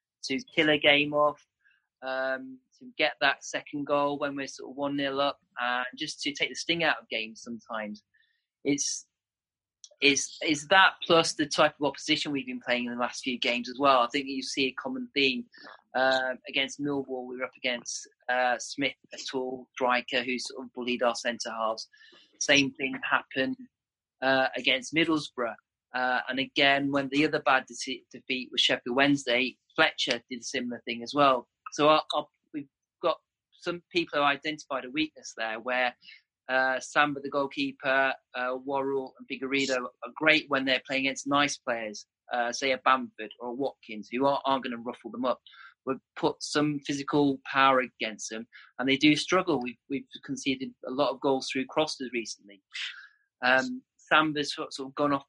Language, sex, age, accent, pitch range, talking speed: English, male, 30-49, British, 125-150 Hz, 185 wpm